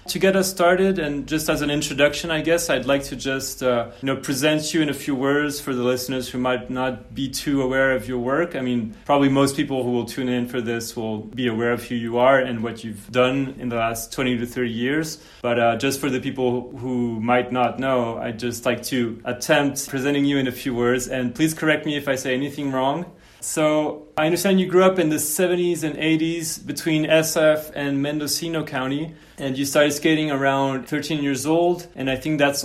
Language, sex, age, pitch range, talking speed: English, male, 30-49, 125-150 Hz, 225 wpm